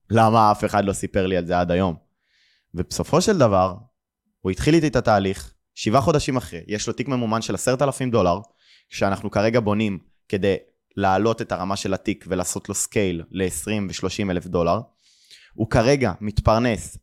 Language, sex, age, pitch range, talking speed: Hebrew, male, 20-39, 95-115 Hz, 170 wpm